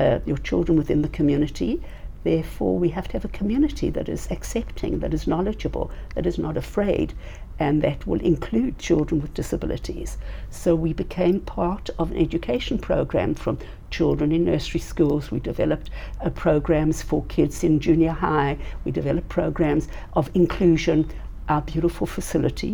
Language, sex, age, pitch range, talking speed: English, female, 60-79, 150-175 Hz, 155 wpm